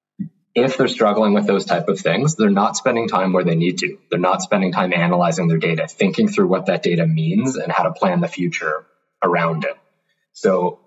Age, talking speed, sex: 20-39, 210 wpm, male